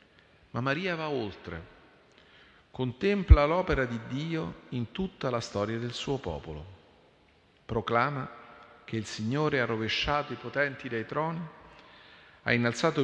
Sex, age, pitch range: male, 40-59, 100-135 Hz